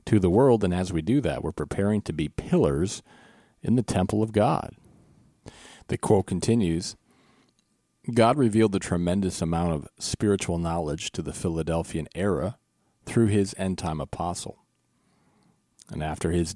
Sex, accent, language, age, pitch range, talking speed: male, American, English, 40-59, 80-100 Hz, 150 wpm